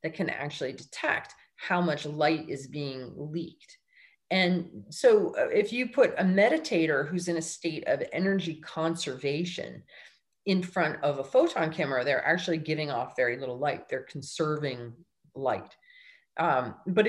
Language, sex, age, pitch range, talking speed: English, female, 30-49, 155-235 Hz, 150 wpm